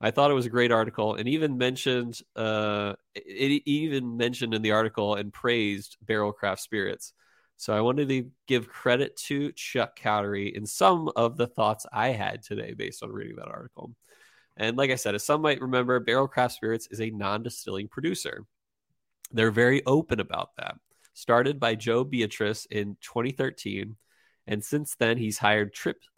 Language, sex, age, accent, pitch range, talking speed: English, male, 20-39, American, 105-125 Hz, 170 wpm